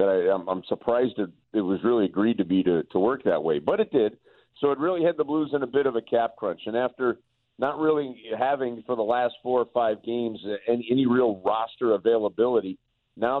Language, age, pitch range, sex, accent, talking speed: English, 50-69, 115-145 Hz, male, American, 230 wpm